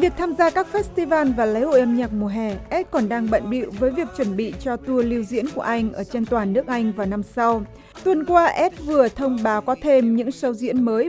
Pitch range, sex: 225-285 Hz, female